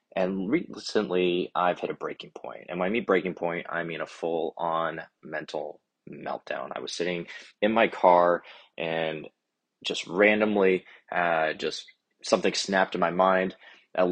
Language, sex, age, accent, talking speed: English, male, 20-39, American, 155 wpm